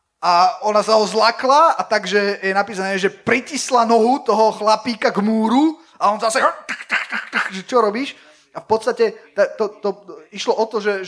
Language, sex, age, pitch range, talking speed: Slovak, male, 20-39, 175-215 Hz, 170 wpm